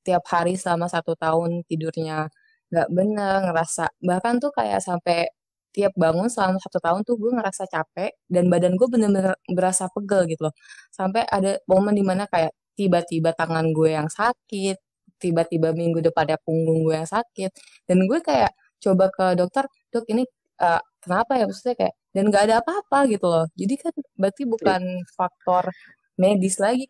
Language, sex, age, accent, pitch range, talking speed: Indonesian, female, 20-39, native, 165-225 Hz, 165 wpm